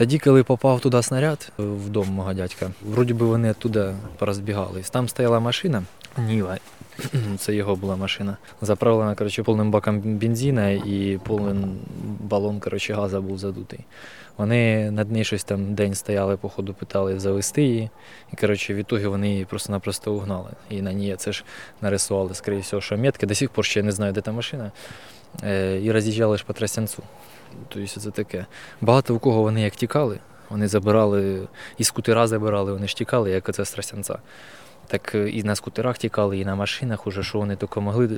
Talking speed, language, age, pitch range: 160 wpm, Ukrainian, 20-39, 100-115 Hz